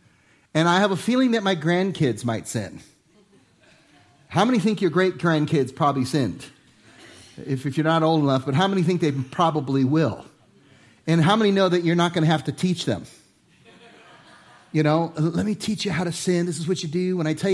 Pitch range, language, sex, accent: 140-175 Hz, English, male, American